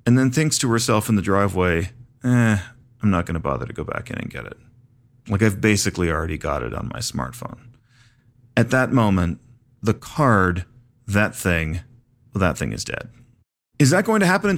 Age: 40-59